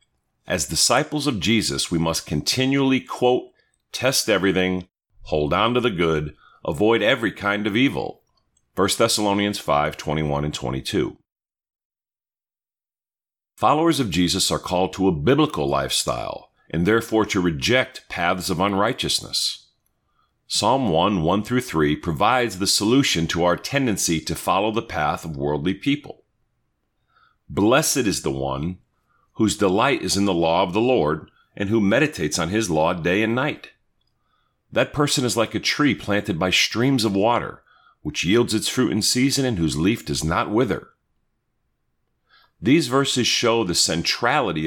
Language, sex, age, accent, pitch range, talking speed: English, male, 50-69, American, 80-125 Hz, 150 wpm